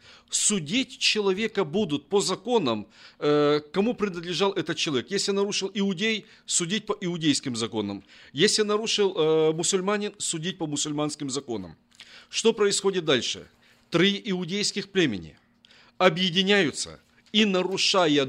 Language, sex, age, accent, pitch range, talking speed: Russian, male, 50-69, native, 155-210 Hz, 105 wpm